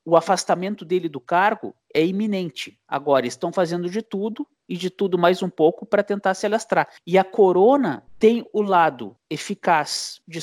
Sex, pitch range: male, 150-200 Hz